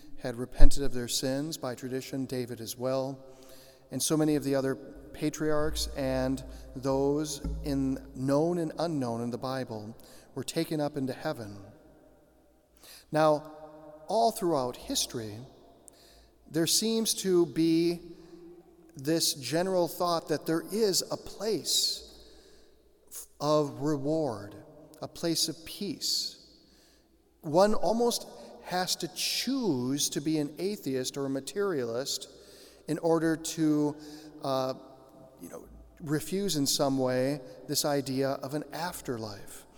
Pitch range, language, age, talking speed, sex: 130-160 Hz, English, 40-59, 120 wpm, male